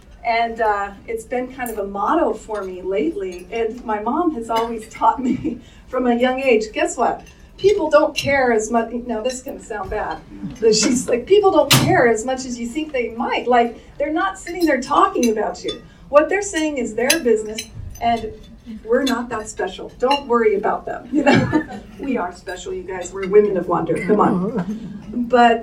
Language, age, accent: English, 40-59, American